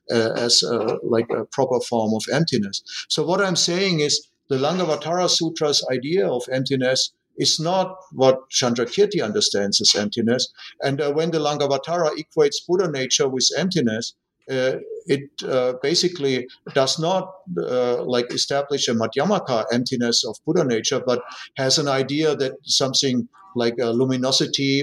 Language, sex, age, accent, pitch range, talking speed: English, male, 50-69, German, 120-160 Hz, 145 wpm